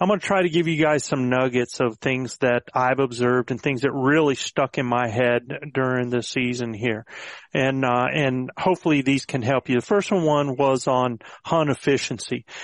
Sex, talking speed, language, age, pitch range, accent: male, 205 wpm, English, 40-59, 130-170 Hz, American